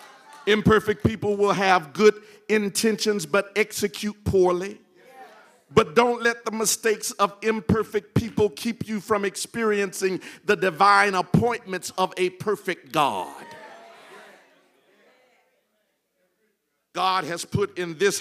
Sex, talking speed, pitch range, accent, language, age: male, 110 wpm, 190-240 Hz, American, English, 50-69